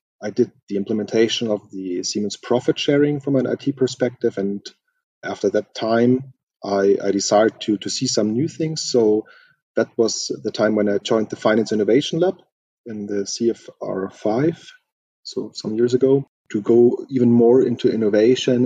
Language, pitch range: English, 105-130 Hz